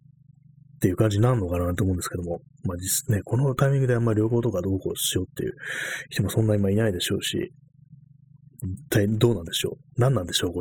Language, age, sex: Japanese, 30-49, male